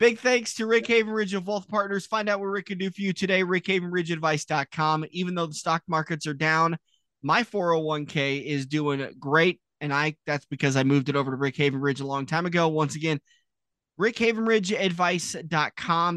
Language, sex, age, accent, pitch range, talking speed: English, male, 20-39, American, 145-200 Hz, 180 wpm